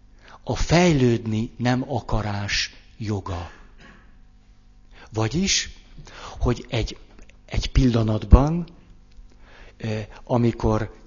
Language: Hungarian